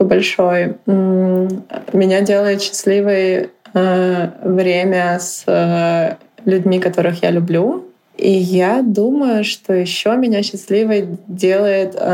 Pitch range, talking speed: 170-195 Hz, 90 wpm